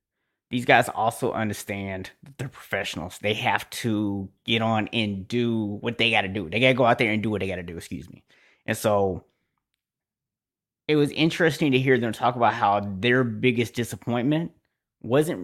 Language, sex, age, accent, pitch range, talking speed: English, male, 20-39, American, 100-125 Hz, 190 wpm